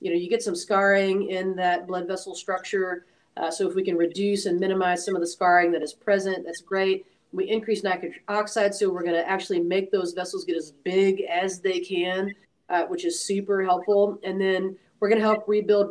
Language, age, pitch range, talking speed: English, 40-59, 175-210 Hz, 220 wpm